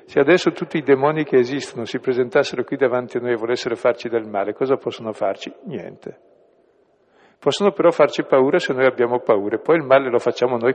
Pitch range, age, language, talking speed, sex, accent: 110-150 Hz, 60-79, Italian, 200 wpm, male, native